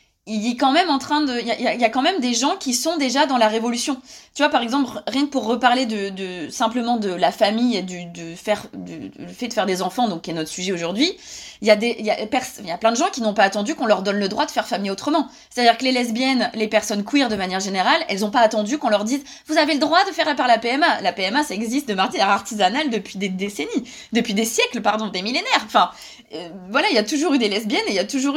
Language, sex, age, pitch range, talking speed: French, female, 20-39, 210-275 Hz, 275 wpm